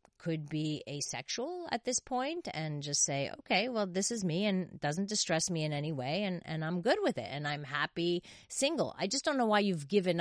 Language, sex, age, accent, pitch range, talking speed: English, female, 40-59, American, 145-195 Hz, 225 wpm